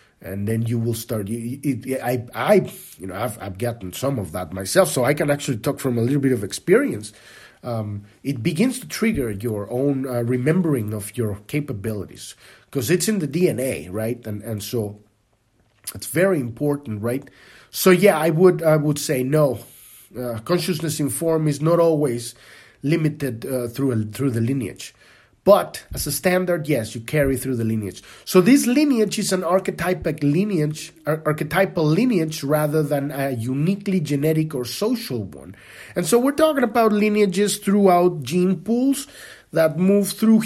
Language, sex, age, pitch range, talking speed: English, male, 30-49, 120-180 Hz, 165 wpm